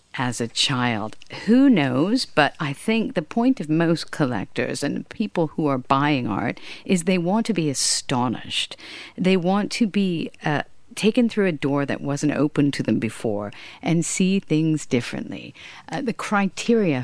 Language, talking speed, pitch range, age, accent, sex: English, 165 wpm, 125-180 Hz, 50-69, American, female